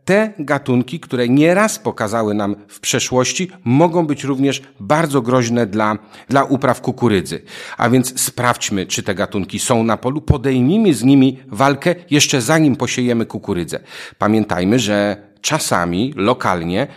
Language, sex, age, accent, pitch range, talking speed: Polish, male, 40-59, native, 110-145 Hz, 135 wpm